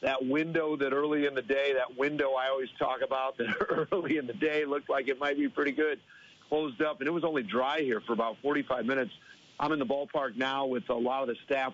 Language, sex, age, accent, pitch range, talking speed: English, male, 50-69, American, 130-150 Hz, 245 wpm